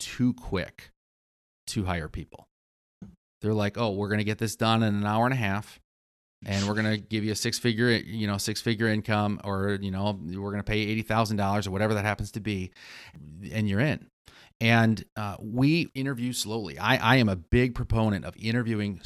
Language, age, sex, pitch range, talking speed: English, 30-49, male, 95-120 Hz, 210 wpm